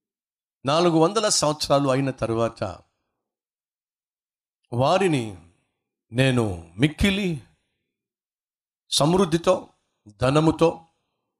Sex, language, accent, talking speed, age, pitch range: male, Telugu, native, 55 wpm, 50-69, 110-155 Hz